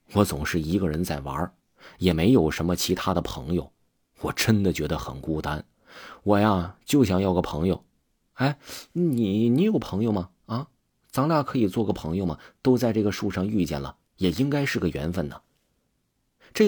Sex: male